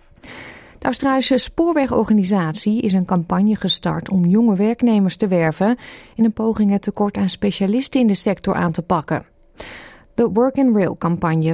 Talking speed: 155 wpm